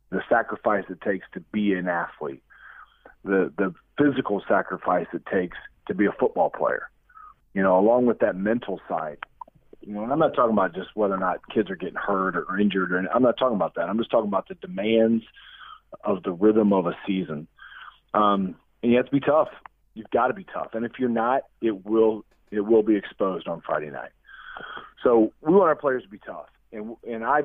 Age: 40-59